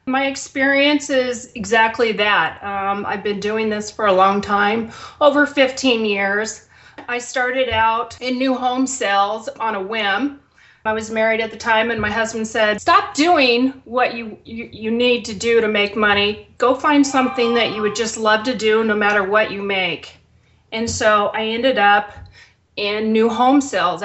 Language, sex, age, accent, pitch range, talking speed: English, female, 30-49, American, 205-245 Hz, 180 wpm